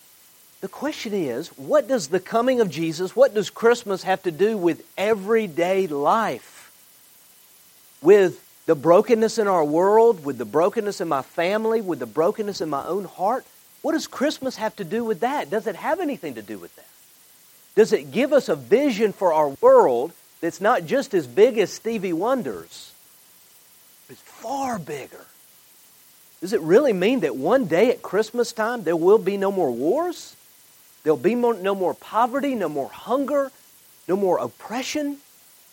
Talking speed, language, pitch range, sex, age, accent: 170 wpm, English, 155-235 Hz, male, 50-69, American